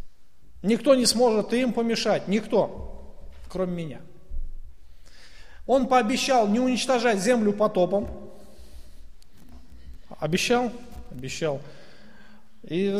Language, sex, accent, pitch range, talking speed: Russian, male, native, 145-210 Hz, 85 wpm